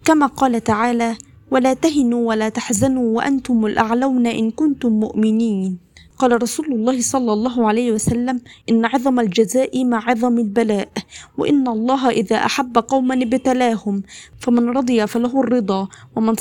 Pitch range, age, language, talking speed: 225-265 Hz, 20-39, Arabic, 130 wpm